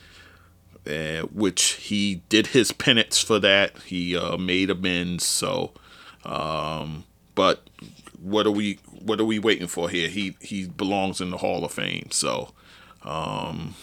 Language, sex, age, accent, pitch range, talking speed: English, male, 40-59, American, 90-125 Hz, 150 wpm